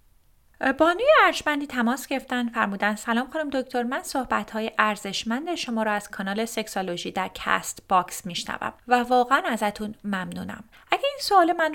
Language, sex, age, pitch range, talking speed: Persian, female, 30-49, 200-265 Hz, 145 wpm